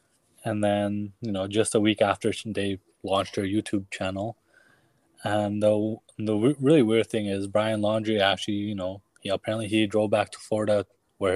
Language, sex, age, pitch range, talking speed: English, male, 20-39, 100-115 Hz, 180 wpm